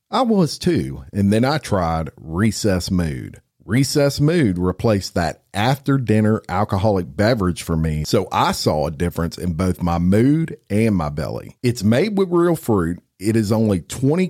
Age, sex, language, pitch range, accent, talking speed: 50-69, male, English, 85-130 Hz, American, 165 wpm